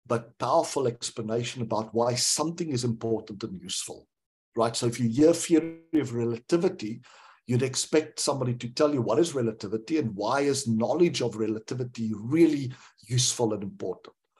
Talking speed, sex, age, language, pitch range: 155 wpm, male, 60-79, English, 115-150 Hz